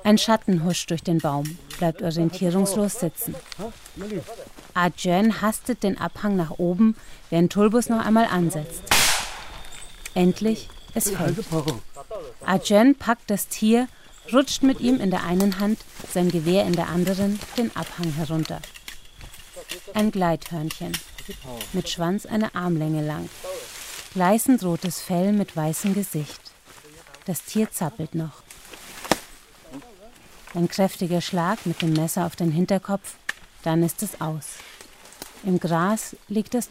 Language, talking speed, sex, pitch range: German, 125 wpm, female, 165-205 Hz